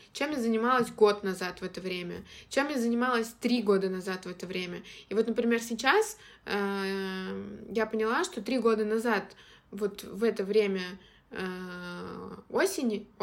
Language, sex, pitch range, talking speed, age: Russian, female, 195-230 Hz, 155 wpm, 20-39